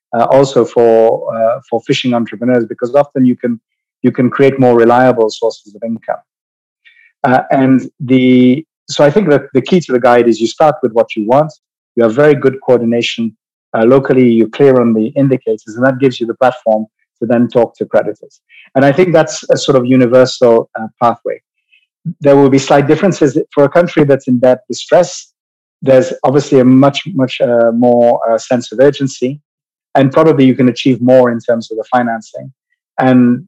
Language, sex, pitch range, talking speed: English, male, 115-140 Hz, 190 wpm